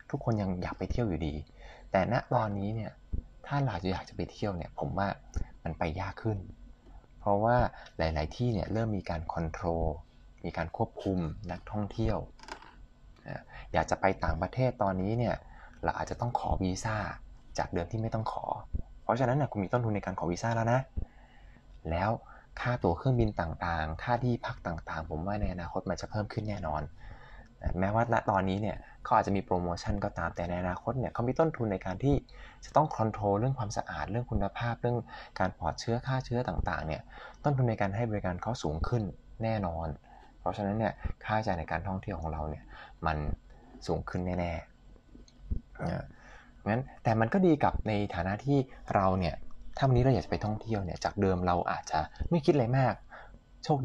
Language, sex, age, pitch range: Thai, male, 20-39, 85-115 Hz